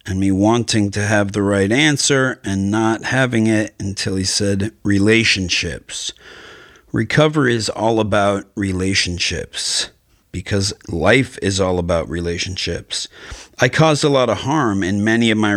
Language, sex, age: English, male, 40-59